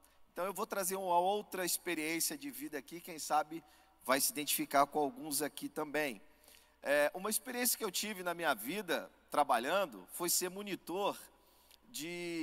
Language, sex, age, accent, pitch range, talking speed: Portuguese, male, 40-59, Brazilian, 165-215 Hz, 155 wpm